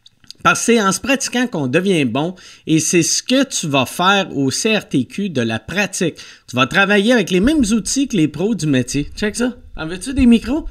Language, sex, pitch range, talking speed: French, male, 150-220 Hz, 220 wpm